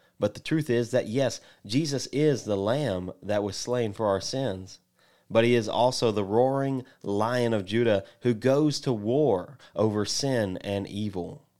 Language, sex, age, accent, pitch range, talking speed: English, male, 30-49, American, 105-130 Hz, 170 wpm